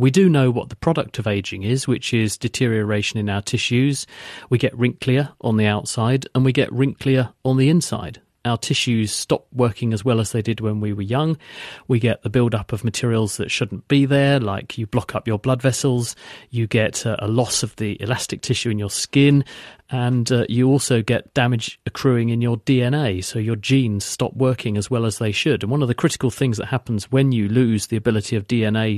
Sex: male